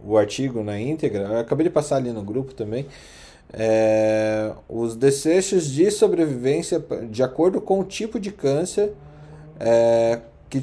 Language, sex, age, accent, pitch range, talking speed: Portuguese, male, 20-39, Brazilian, 100-135 Hz, 145 wpm